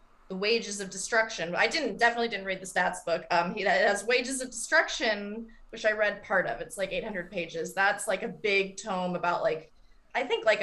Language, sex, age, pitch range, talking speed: English, female, 20-39, 195-290 Hz, 215 wpm